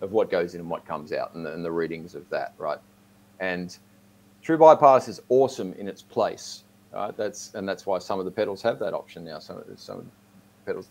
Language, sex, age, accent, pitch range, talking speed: English, male, 40-59, Australian, 95-125 Hz, 220 wpm